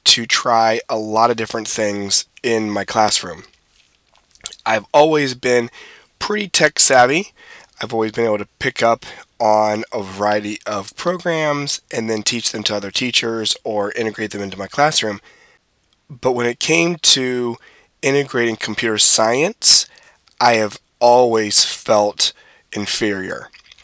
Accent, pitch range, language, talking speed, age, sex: American, 105-125 Hz, English, 135 wpm, 20-39, male